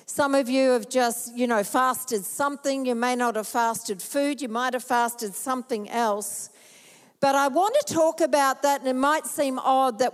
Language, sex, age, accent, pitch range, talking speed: English, female, 50-69, Australian, 240-280 Hz, 200 wpm